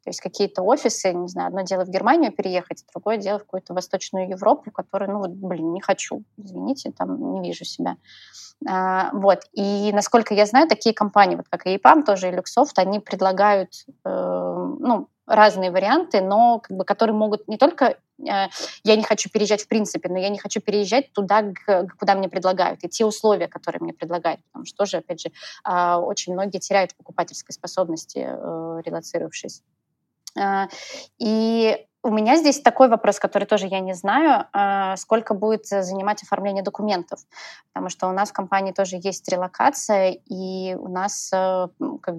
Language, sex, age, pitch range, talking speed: Russian, female, 20-39, 185-215 Hz, 170 wpm